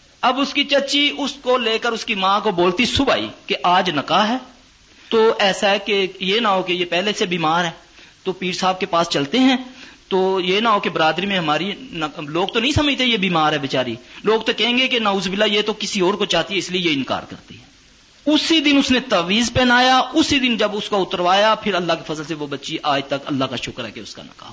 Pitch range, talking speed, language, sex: 165-220 Hz, 255 wpm, Urdu, male